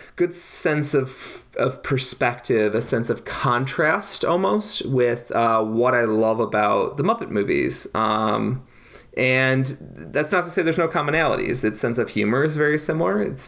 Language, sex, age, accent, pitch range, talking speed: English, male, 20-39, American, 115-150 Hz, 160 wpm